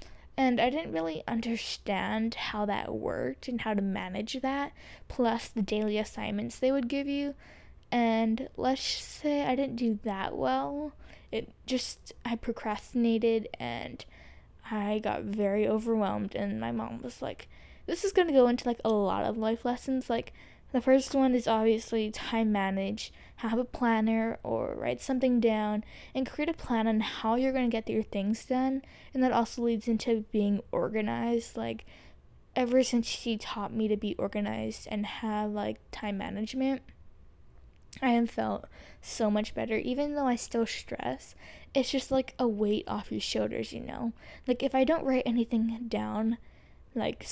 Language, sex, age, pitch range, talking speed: English, female, 10-29, 210-255 Hz, 170 wpm